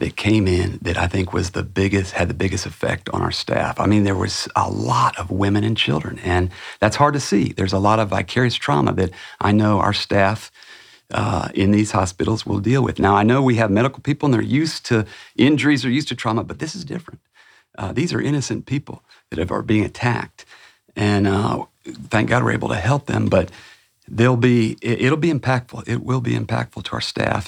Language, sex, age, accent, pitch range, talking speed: English, male, 50-69, American, 100-120 Hz, 220 wpm